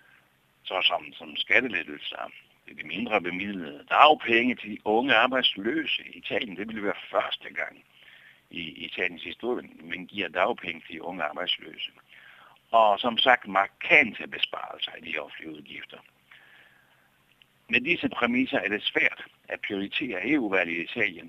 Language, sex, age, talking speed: Danish, male, 60-79, 140 wpm